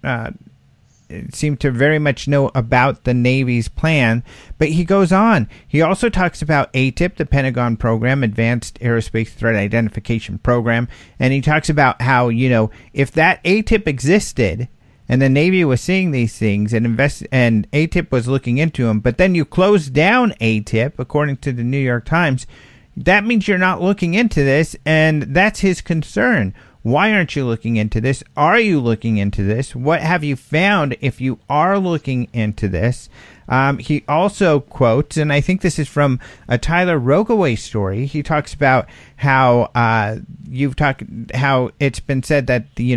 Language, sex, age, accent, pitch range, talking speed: English, male, 50-69, American, 115-155 Hz, 175 wpm